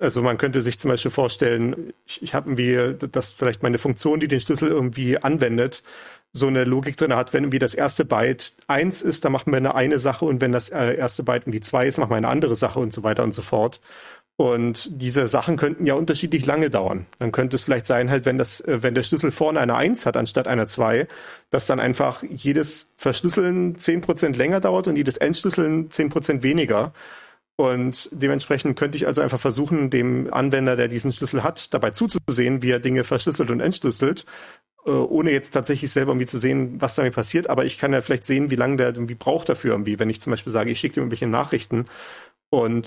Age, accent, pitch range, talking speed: 40-59, German, 125-150 Hz, 215 wpm